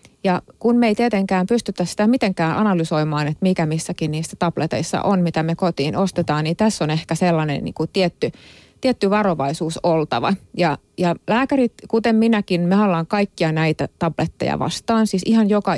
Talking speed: 160 wpm